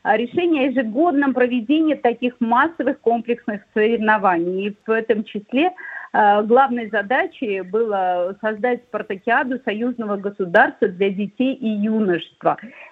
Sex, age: female, 50-69